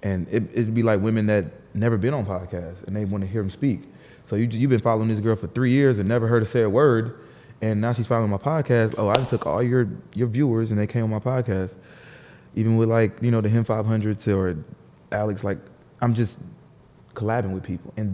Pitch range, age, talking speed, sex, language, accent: 100-130 Hz, 20-39, 235 wpm, male, English, American